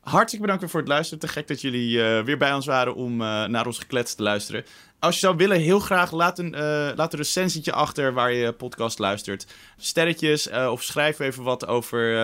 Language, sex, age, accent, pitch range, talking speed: Dutch, male, 20-39, Dutch, 115-160 Hz, 225 wpm